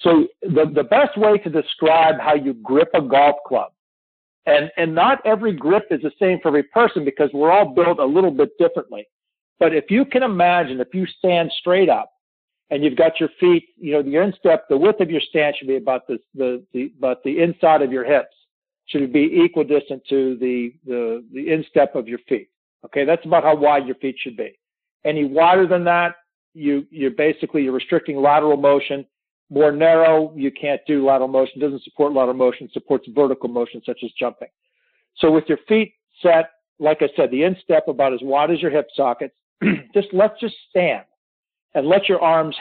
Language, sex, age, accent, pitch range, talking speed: English, male, 50-69, American, 135-175 Hz, 200 wpm